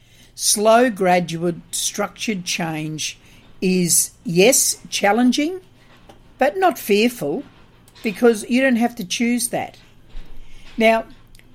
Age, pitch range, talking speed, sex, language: 60-79, 160-225 Hz, 95 wpm, female, English